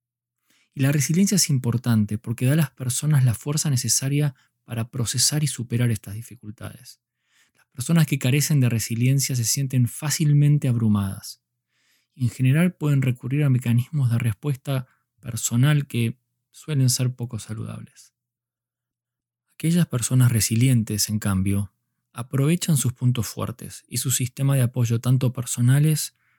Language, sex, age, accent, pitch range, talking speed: Spanish, male, 20-39, Argentinian, 110-130 Hz, 135 wpm